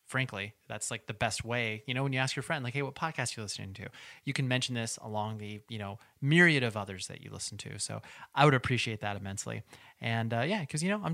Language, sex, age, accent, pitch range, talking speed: English, male, 30-49, American, 115-140 Hz, 265 wpm